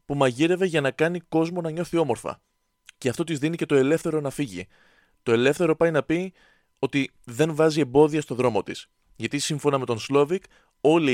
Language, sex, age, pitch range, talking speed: Greek, male, 20-39, 115-165 Hz, 195 wpm